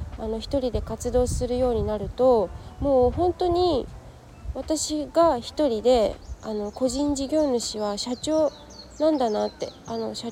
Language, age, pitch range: Japanese, 20-39, 220-285 Hz